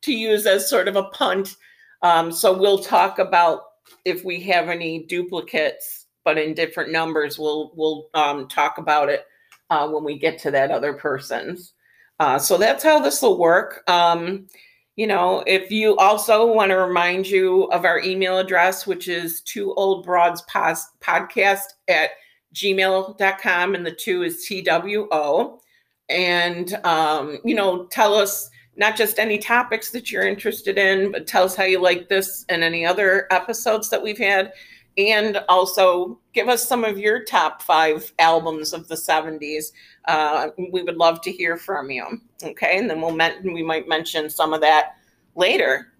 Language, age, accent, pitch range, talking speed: English, 50-69, American, 165-205 Hz, 170 wpm